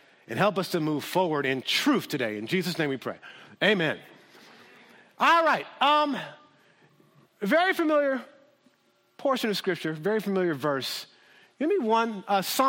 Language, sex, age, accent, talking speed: English, male, 50-69, American, 160 wpm